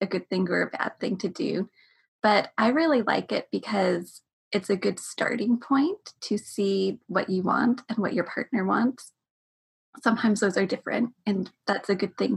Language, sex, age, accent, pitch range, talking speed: English, female, 20-39, American, 200-250 Hz, 190 wpm